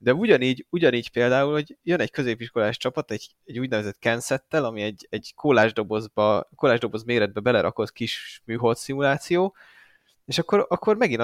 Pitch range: 110-145 Hz